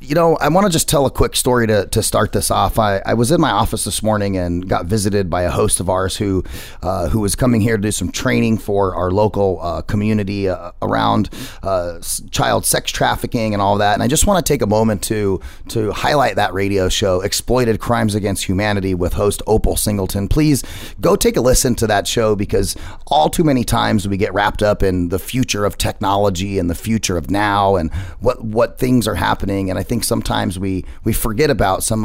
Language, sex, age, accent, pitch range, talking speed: English, male, 30-49, American, 90-115 Hz, 225 wpm